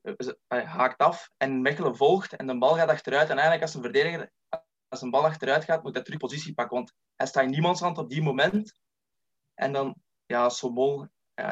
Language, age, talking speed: Dutch, 20-39, 210 wpm